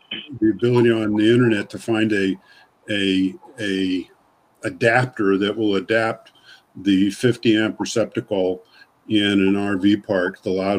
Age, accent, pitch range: 50-69, American, 100-115 Hz